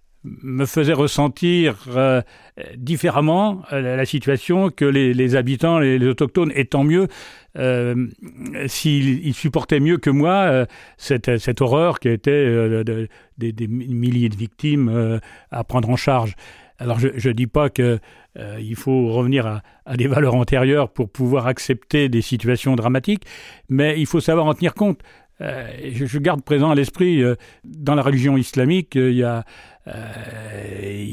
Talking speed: 165 wpm